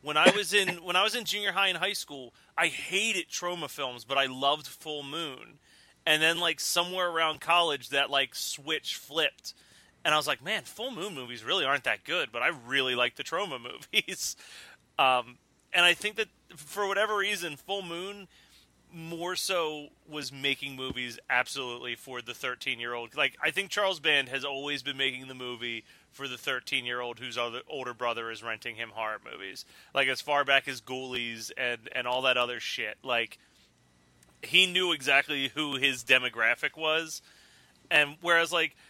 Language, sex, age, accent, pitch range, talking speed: English, male, 30-49, American, 130-175 Hz, 180 wpm